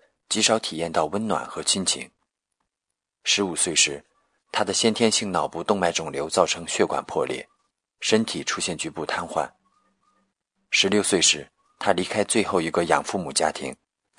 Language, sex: Chinese, male